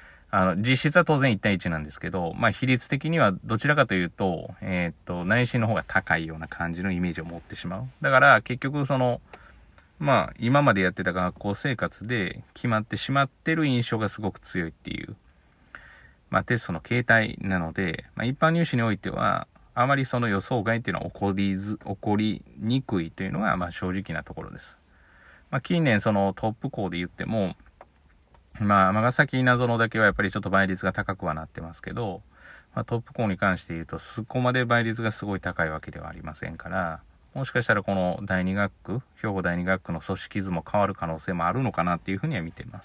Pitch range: 90-125 Hz